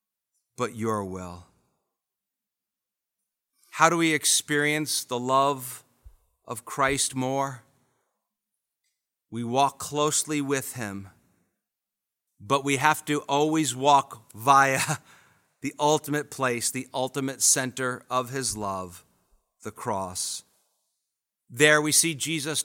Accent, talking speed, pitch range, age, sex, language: American, 105 wpm, 110-145 Hz, 50-69, male, English